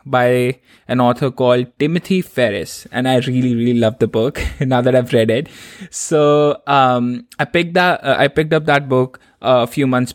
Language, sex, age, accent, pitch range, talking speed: English, male, 20-39, Indian, 120-150 Hz, 195 wpm